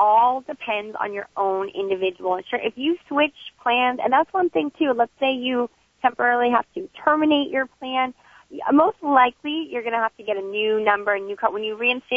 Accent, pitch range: American, 205-280 Hz